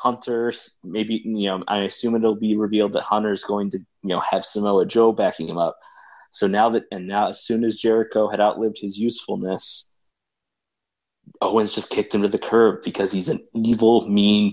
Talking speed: 190 wpm